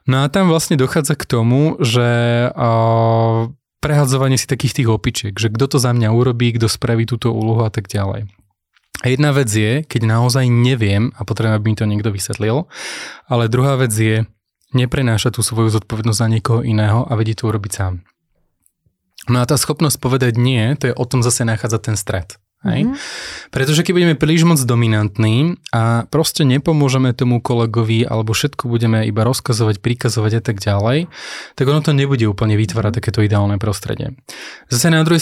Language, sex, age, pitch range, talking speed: Slovak, male, 20-39, 110-140 Hz, 175 wpm